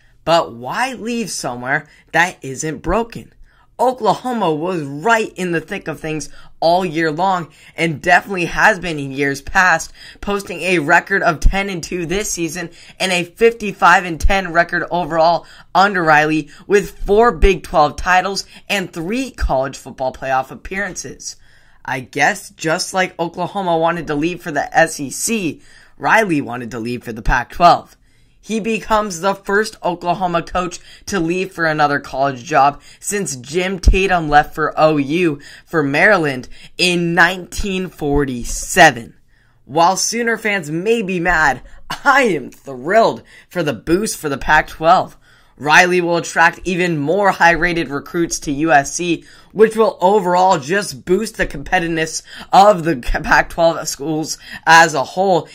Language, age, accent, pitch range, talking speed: English, 10-29, American, 150-185 Hz, 145 wpm